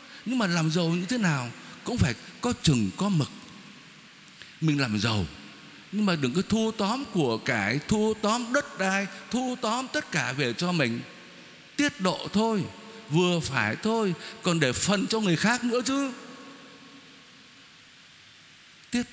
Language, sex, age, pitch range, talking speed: Vietnamese, male, 60-79, 160-220 Hz, 155 wpm